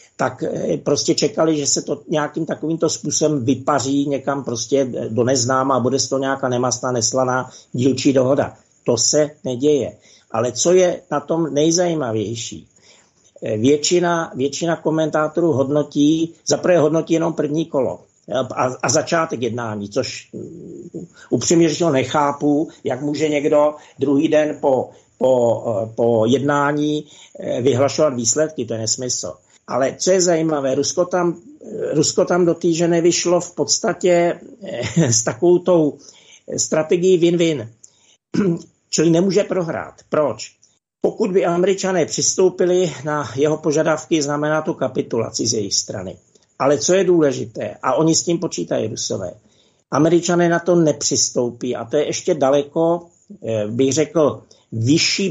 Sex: male